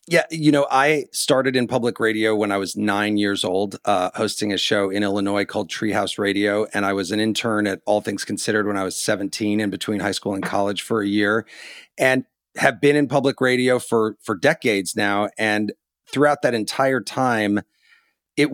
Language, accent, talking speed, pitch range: English, American, 195 wpm, 110-140 Hz